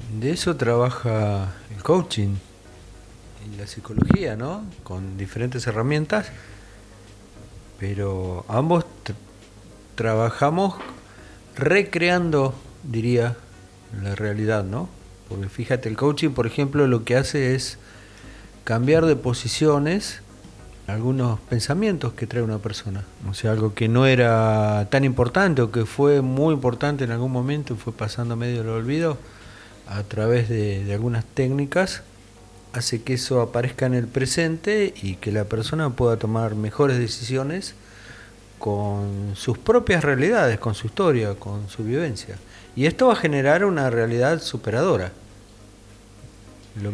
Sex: male